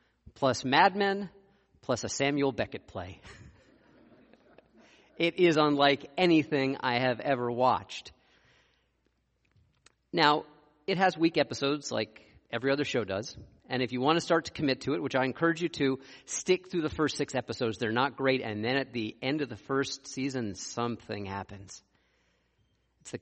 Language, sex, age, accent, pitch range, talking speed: English, male, 40-59, American, 110-145 Hz, 165 wpm